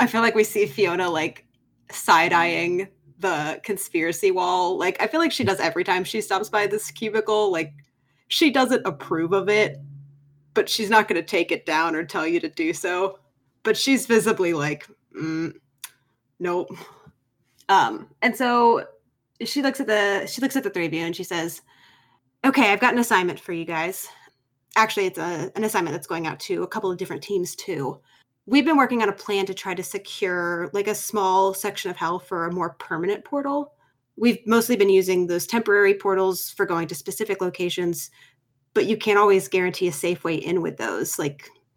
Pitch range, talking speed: 170-215 Hz, 195 wpm